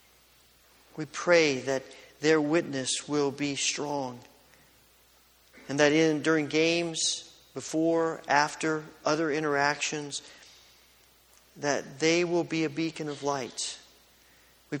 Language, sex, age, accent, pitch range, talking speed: English, male, 40-59, American, 120-155 Hz, 105 wpm